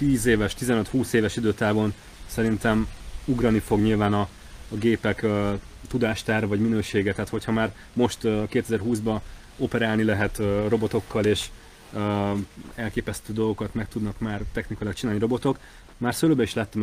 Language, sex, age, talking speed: Hungarian, male, 30-49, 130 wpm